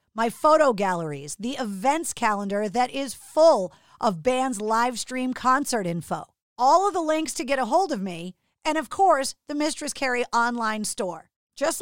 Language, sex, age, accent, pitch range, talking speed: English, female, 40-59, American, 205-285 Hz, 175 wpm